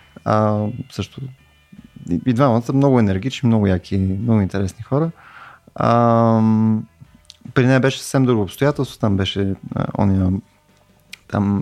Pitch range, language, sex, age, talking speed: 110-165 Hz, Bulgarian, male, 20-39, 125 wpm